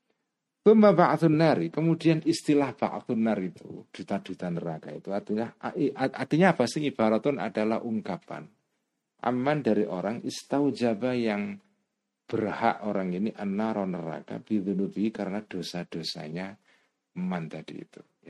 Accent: native